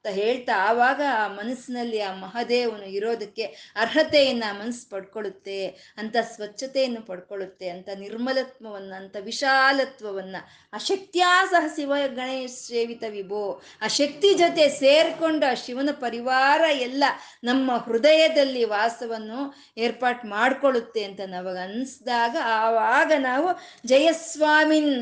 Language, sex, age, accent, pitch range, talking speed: Kannada, female, 20-39, native, 210-280 Hz, 90 wpm